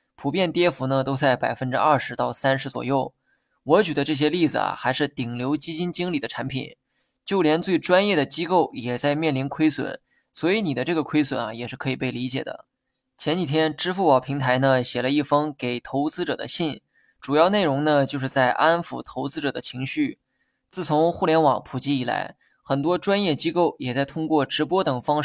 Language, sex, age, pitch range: Chinese, male, 20-39, 130-160 Hz